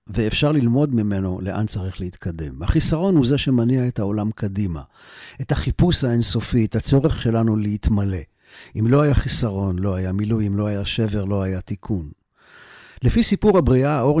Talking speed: 155 wpm